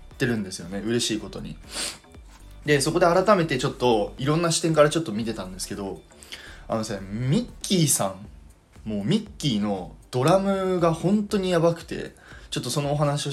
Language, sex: Japanese, male